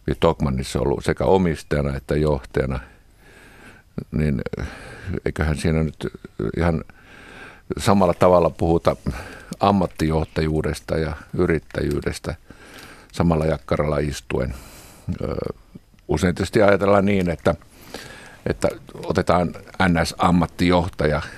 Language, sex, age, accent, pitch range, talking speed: Finnish, male, 50-69, native, 75-90 Hz, 80 wpm